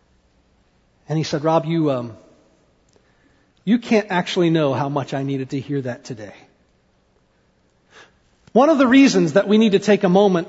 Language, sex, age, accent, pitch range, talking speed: English, male, 40-59, American, 170-220 Hz, 165 wpm